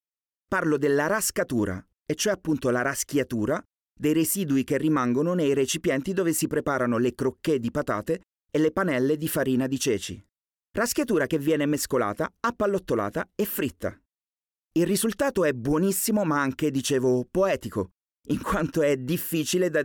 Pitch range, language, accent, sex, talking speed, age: 130-175 Hz, Italian, native, male, 145 wpm, 30-49